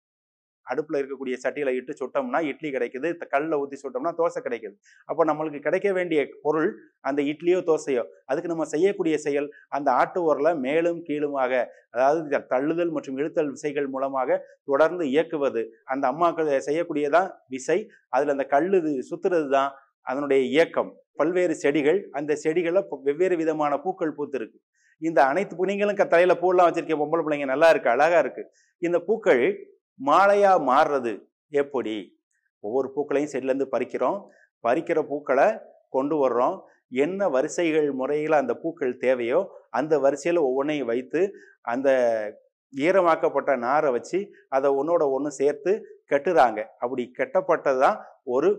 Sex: male